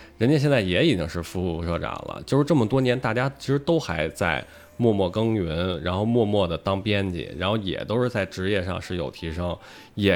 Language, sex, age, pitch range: Chinese, male, 20-39, 85-115 Hz